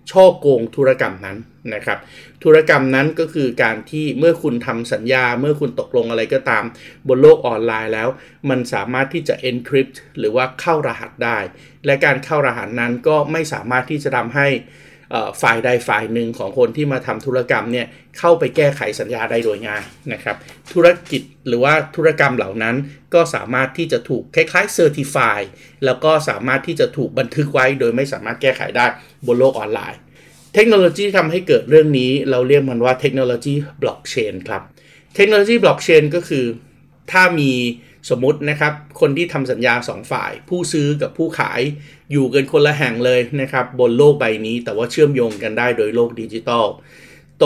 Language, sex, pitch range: Thai, male, 125-155 Hz